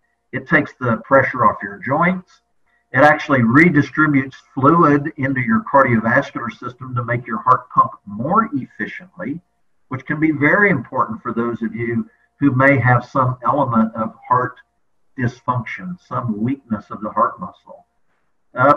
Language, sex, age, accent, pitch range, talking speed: English, male, 50-69, American, 120-155 Hz, 145 wpm